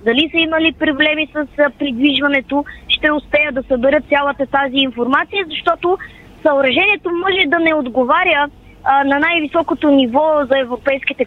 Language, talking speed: Bulgarian, 140 wpm